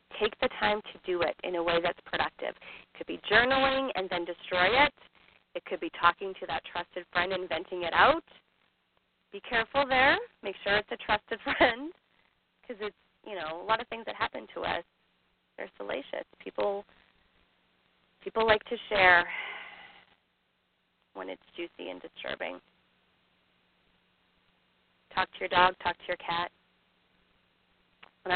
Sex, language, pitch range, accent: female, English, 170-225 Hz, American